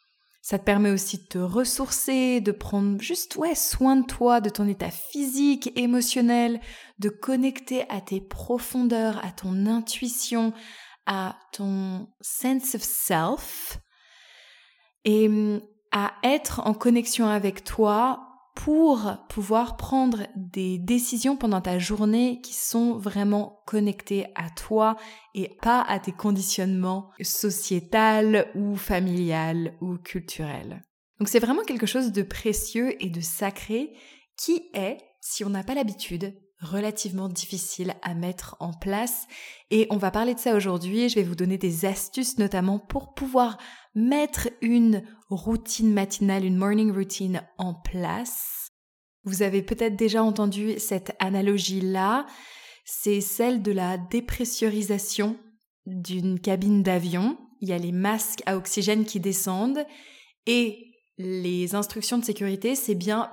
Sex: female